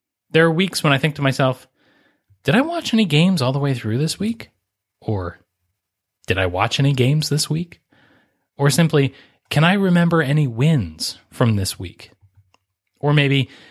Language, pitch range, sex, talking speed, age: English, 105-165 Hz, male, 170 wpm, 30-49